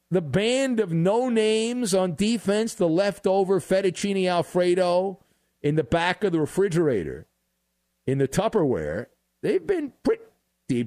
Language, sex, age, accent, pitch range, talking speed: English, male, 50-69, American, 140-200 Hz, 125 wpm